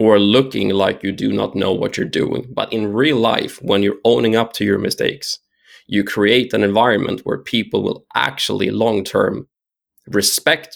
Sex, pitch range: male, 100-130 Hz